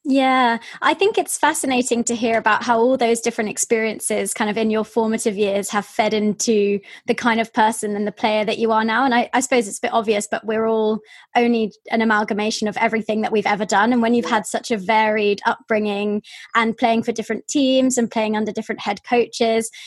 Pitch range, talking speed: 210-240 Hz, 215 wpm